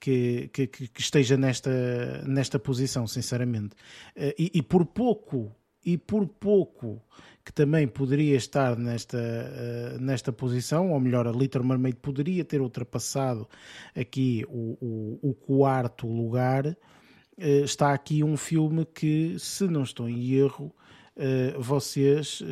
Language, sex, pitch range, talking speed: Portuguese, male, 120-140 Hz, 125 wpm